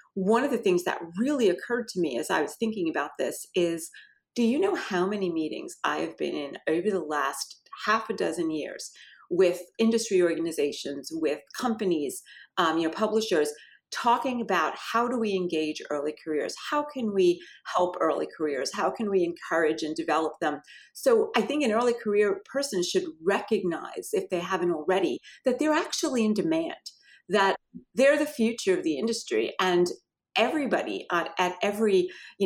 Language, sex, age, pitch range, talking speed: English, female, 40-59, 175-235 Hz, 175 wpm